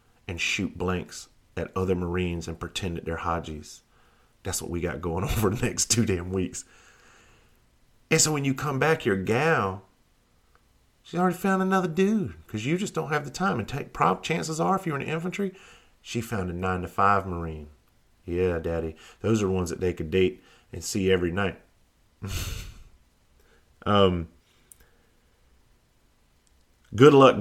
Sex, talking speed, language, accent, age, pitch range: male, 160 wpm, English, American, 40-59, 80-105 Hz